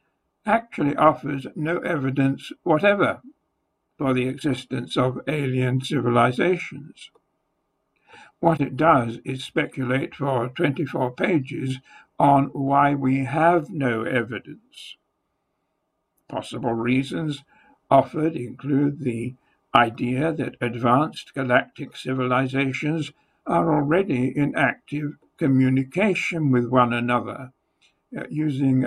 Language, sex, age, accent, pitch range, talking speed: English, male, 60-79, American, 130-155 Hz, 90 wpm